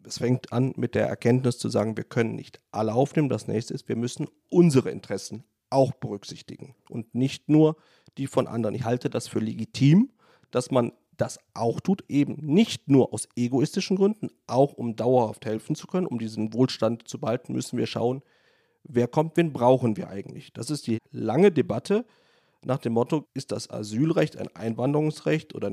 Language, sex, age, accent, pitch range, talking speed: German, male, 40-59, German, 110-145 Hz, 180 wpm